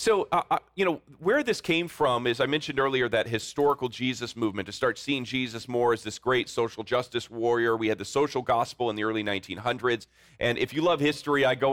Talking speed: 225 wpm